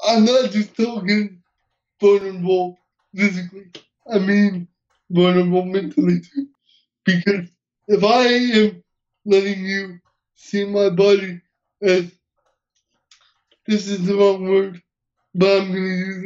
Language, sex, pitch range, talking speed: English, male, 185-210 Hz, 115 wpm